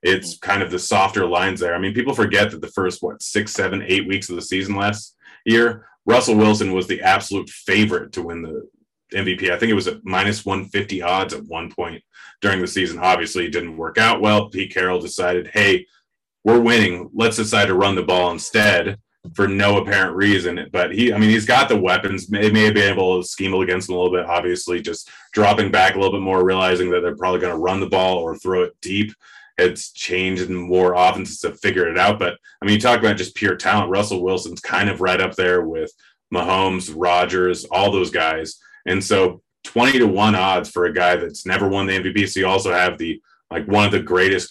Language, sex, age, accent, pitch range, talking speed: English, male, 30-49, American, 90-100 Hz, 225 wpm